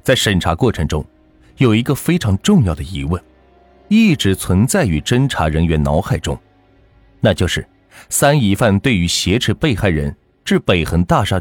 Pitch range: 80-125 Hz